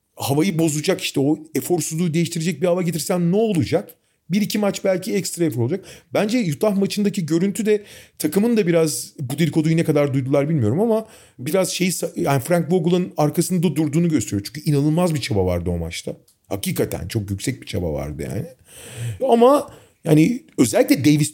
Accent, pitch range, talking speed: native, 120-175 Hz, 165 wpm